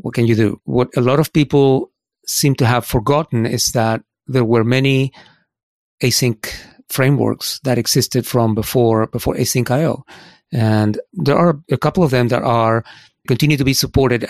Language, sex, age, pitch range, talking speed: English, male, 40-59, 115-135 Hz, 165 wpm